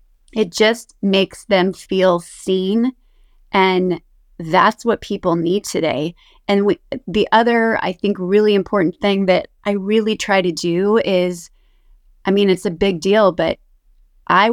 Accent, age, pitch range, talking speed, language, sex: American, 30-49, 180-215 Hz, 145 wpm, English, female